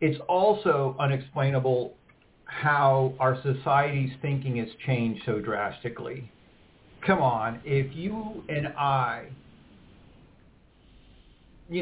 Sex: male